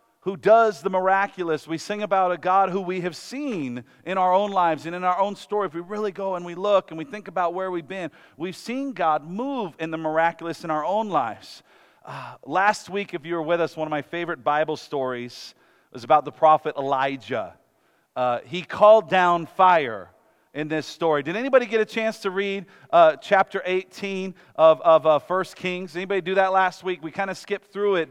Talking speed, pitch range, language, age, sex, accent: 215 wpm, 165-205 Hz, English, 40-59, male, American